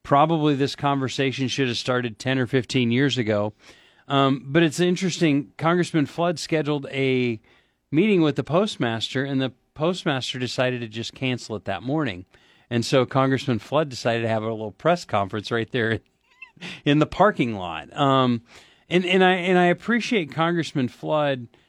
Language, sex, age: English, male, 40-59